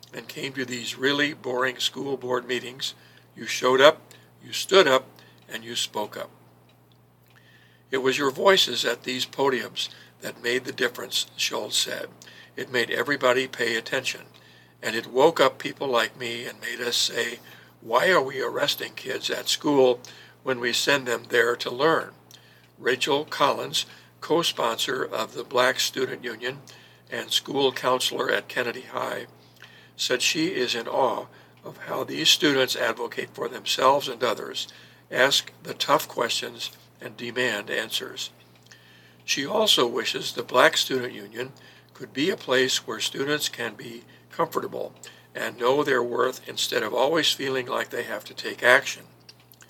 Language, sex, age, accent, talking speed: English, male, 60-79, American, 155 wpm